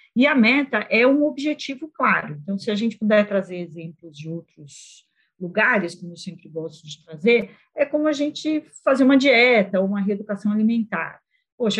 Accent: Brazilian